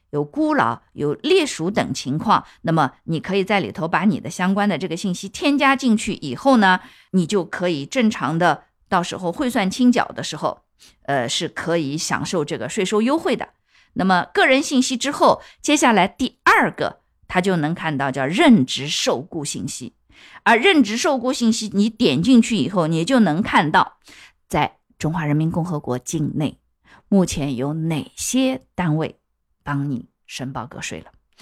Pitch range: 160-225 Hz